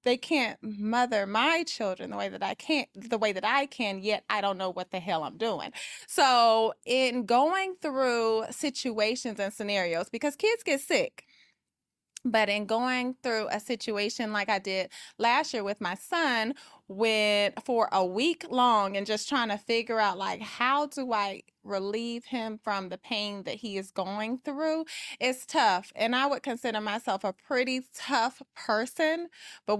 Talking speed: 175 wpm